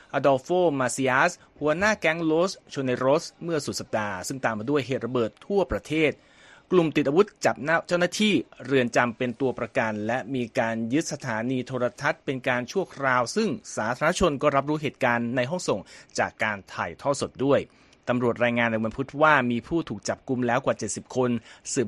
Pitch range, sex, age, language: 115-150 Hz, male, 30-49, Thai